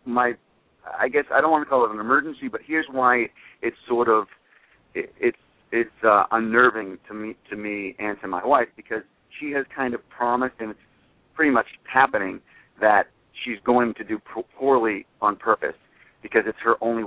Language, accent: English, American